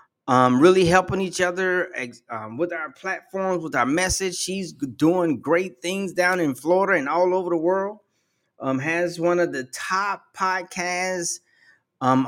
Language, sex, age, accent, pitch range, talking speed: English, male, 30-49, American, 175-230 Hz, 155 wpm